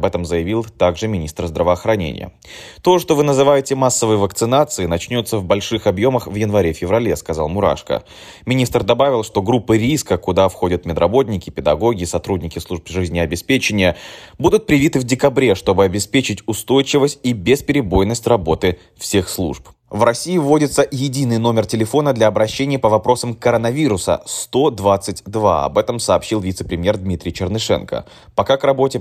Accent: native